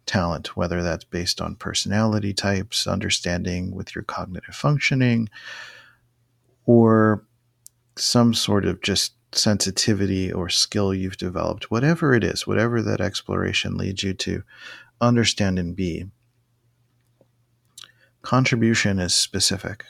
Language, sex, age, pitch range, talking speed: English, male, 40-59, 100-120 Hz, 110 wpm